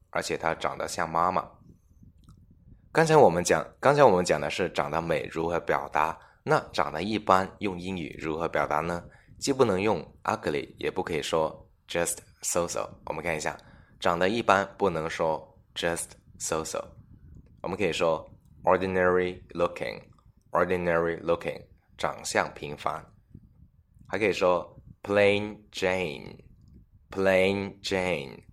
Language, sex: Chinese, male